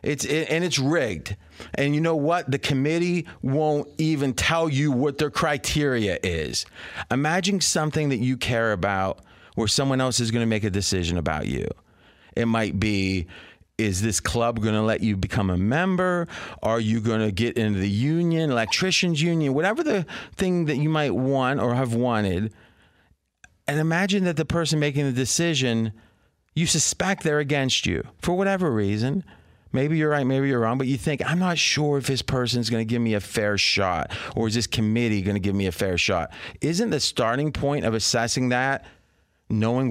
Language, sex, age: English, male, 30-49